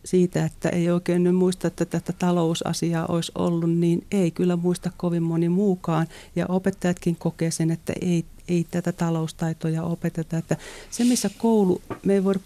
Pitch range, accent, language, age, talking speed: 165-185 Hz, native, Finnish, 40-59, 170 wpm